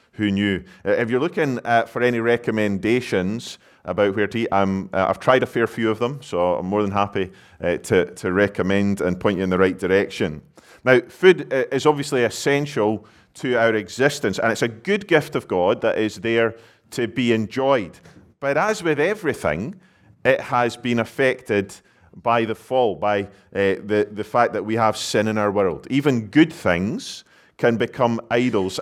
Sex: male